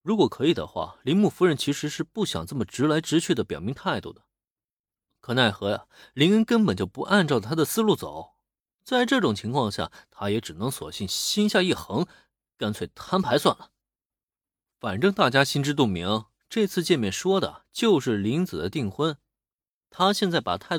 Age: 20-39